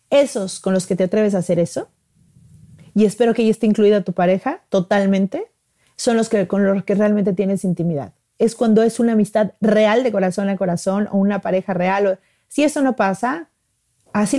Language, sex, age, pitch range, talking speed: Spanish, female, 30-49, 190-235 Hz, 190 wpm